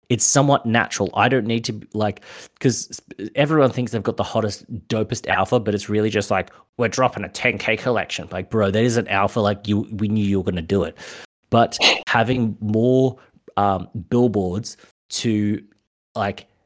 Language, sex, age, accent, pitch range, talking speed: English, male, 30-49, Australian, 105-125 Hz, 180 wpm